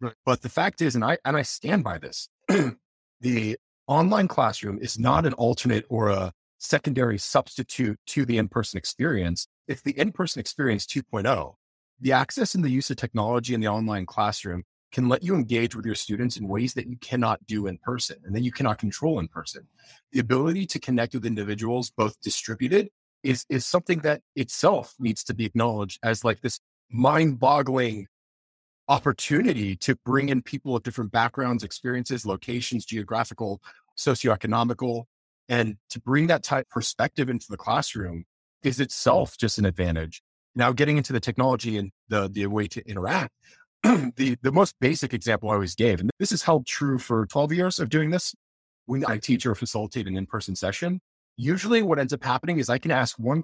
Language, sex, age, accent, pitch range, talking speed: English, male, 30-49, American, 105-135 Hz, 180 wpm